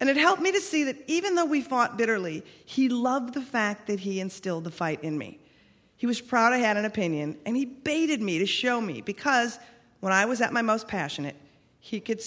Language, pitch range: English, 160-230 Hz